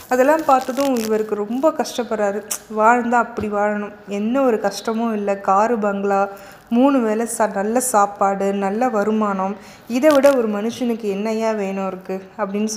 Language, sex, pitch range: Tamil, female, 205-250 Hz